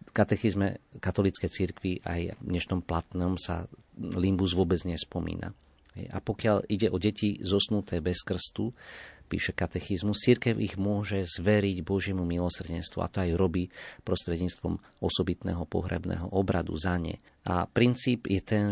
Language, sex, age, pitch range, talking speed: Slovak, male, 40-59, 90-105 Hz, 135 wpm